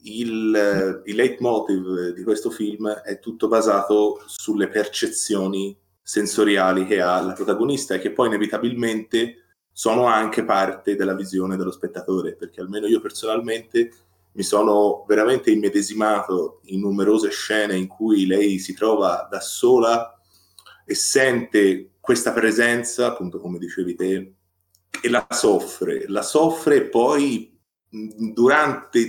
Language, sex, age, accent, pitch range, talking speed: Italian, male, 30-49, native, 95-120 Hz, 120 wpm